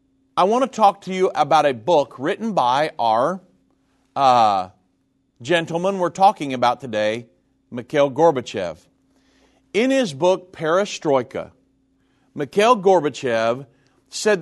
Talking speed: 110 wpm